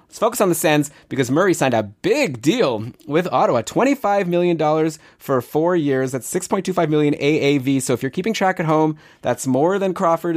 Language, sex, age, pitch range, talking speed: English, male, 20-39, 125-170 Hz, 190 wpm